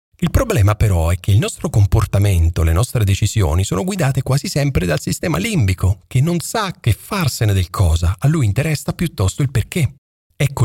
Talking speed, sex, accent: 180 wpm, male, native